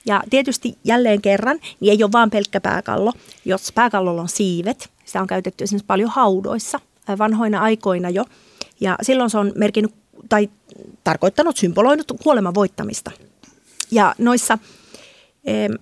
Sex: female